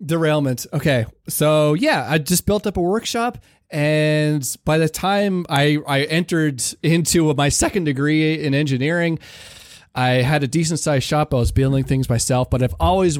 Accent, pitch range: American, 120-155 Hz